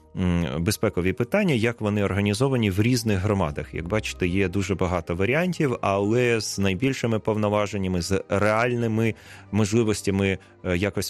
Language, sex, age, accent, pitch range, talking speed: Ukrainian, male, 30-49, native, 90-110 Hz, 120 wpm